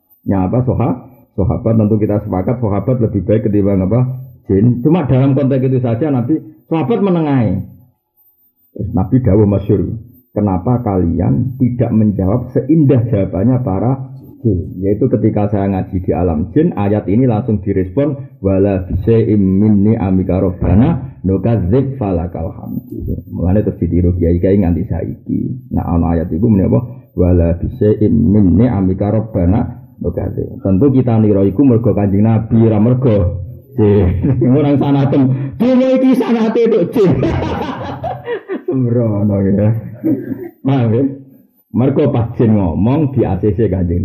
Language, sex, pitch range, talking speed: Indonesian, male, 100-130 Hz, 130 wpm